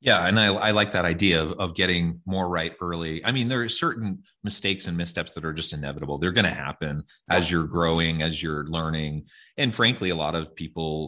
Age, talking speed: 30-49, 220 wpm